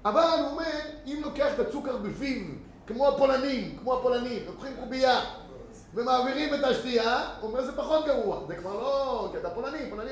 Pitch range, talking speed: 205-270 Hz, 170 wpm